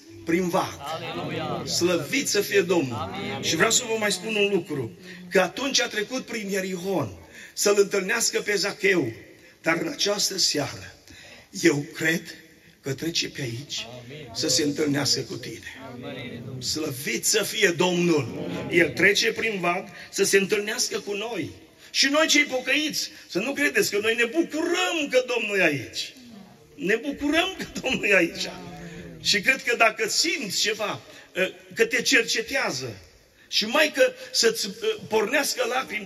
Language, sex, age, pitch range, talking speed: Romanian, male, 50-69, 160-230 Hz, 145 wpm